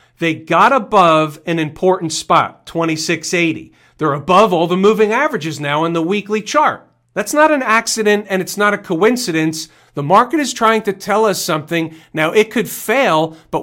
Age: 40-59